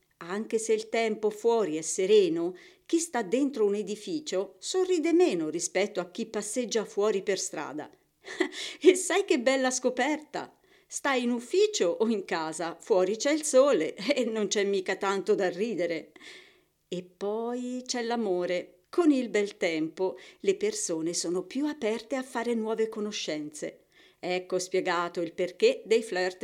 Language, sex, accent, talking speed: Italian, female, native, 150 wpm